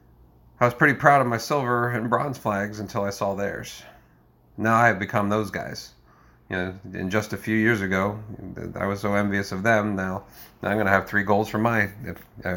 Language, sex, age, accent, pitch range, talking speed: English, male, 40-59, American, 95-110 Hz, 220 wpm